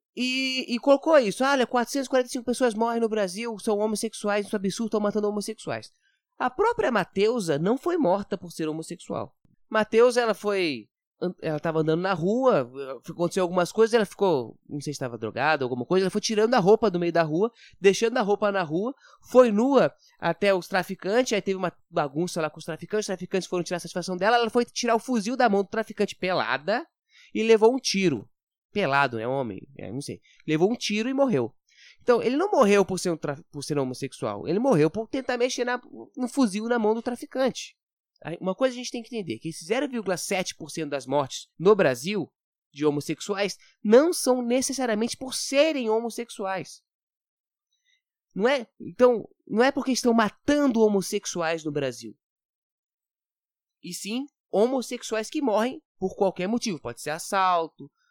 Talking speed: 180 wpm